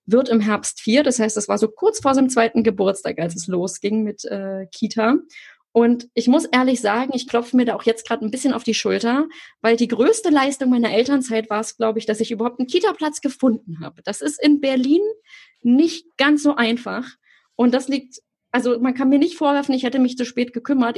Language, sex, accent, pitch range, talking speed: German, female, German, 230-275 Hz, 220 wpm